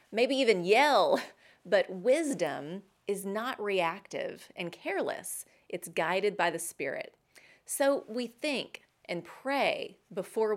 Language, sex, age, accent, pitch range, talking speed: English, female, 30-49, American, 180-260 Hz, 120 wpm